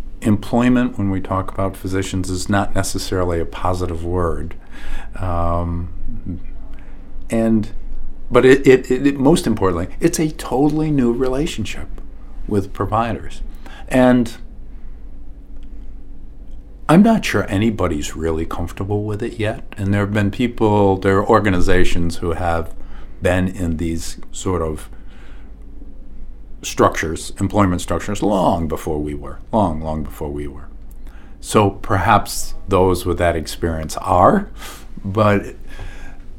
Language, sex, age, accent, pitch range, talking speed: English, male, 50-69, American, 85-115 Hz, 120 wpm